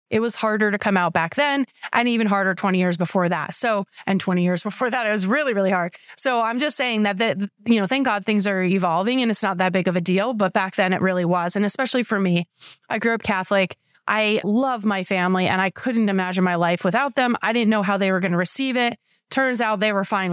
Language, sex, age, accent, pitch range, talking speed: English, female, 30-49, American, 185-225 Hz, 255 wpm